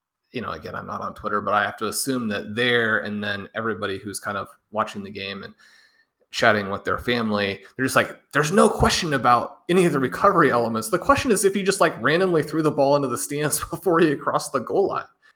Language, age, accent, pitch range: English, 30-49, American, 110-170 Hz